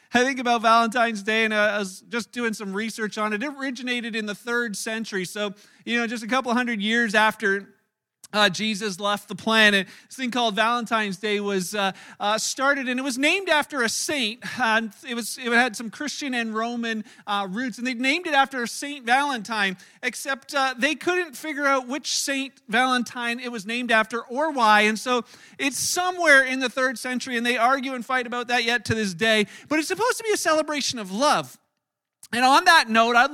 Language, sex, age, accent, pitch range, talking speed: English, male, 40-59, American, 220-270 Hz, 210 wpm